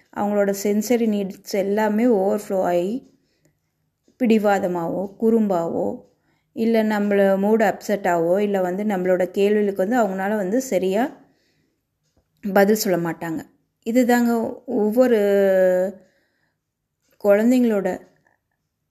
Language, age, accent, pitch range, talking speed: Tamil, 30-49, native, 190-225 Hz, 85 wpm